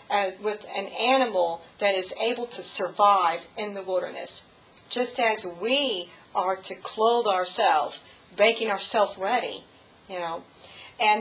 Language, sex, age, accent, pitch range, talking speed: English, female, 50-69, American, 200-240 Hz, 135 wpm